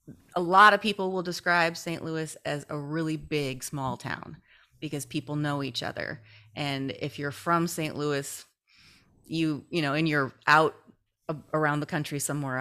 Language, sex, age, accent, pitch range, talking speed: English, female, 30-49, American, 135-165 Hz, 165 wpm